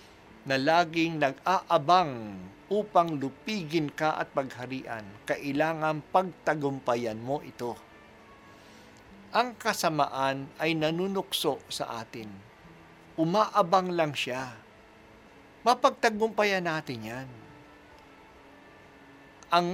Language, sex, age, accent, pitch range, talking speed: Filipino, male, 50-69, native, 115-195 Hz, 75 wpm